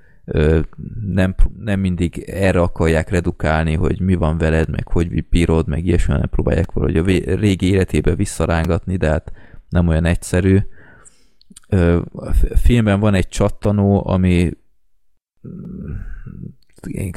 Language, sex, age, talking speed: Hungarian, male, 20-39, 125 wpm